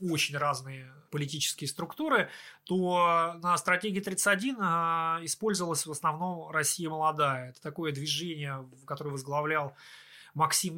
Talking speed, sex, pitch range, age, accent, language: 100 wpm, male, 150-185 Hz, 20-39, native, Russian